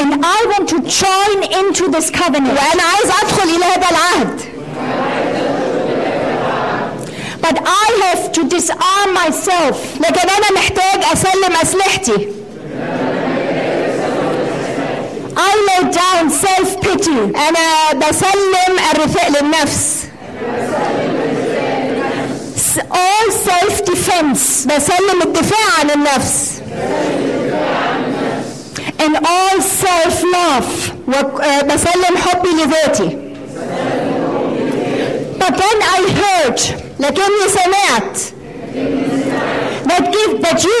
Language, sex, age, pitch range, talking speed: German, female, 50-69, 320-385 Hz, 45 wpm